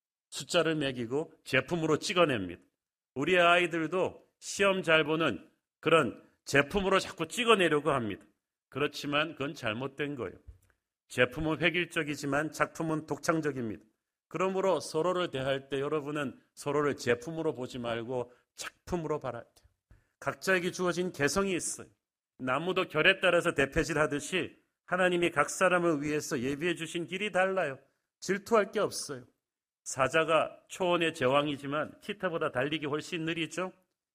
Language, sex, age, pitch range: Korean, male, 40-59, 140-175 Hz